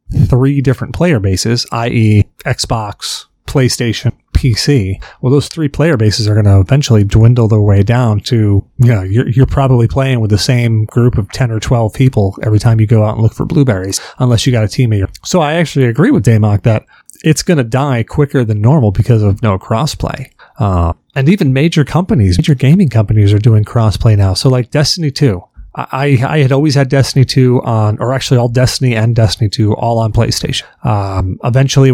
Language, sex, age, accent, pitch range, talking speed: English, male, 30-49, American, 110-135 Hz, 195 wpm